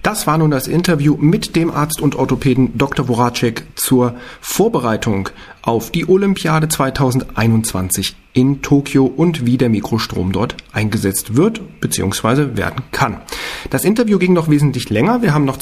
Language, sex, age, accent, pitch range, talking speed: German, male, 40-59, German, 115-155 Hz, 150 wpm